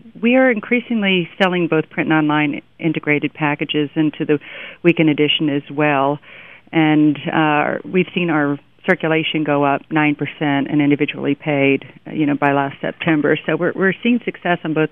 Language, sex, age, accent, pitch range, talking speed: English, female, 40-59, American, 145-160 Hz, 160 wpm